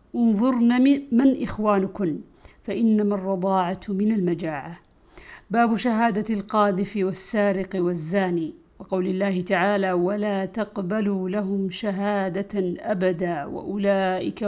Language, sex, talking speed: Arabic, female, 85 wpm